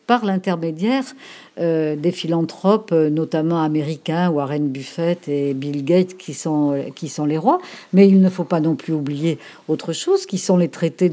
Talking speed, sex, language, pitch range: 165 wpm, female, French, 150-195 Hz